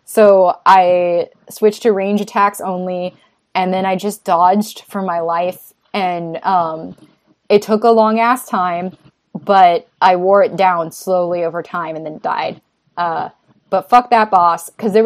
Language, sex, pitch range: English, female, 175-245 Hz